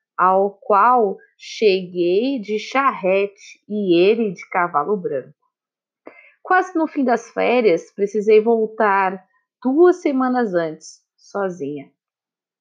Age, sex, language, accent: 20-39, female, Portuguese, Brazilian